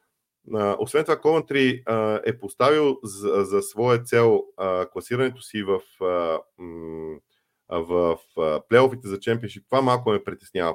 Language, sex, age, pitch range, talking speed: Bulgarian, male, 40-59, 110-135 Hz, 115 wpm